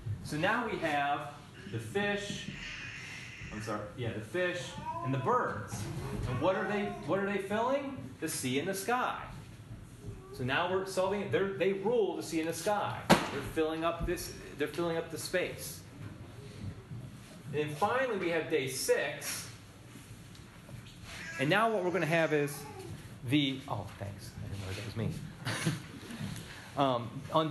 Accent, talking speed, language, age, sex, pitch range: American, 160 wpm, English, 30-49, male, 115-170 Hz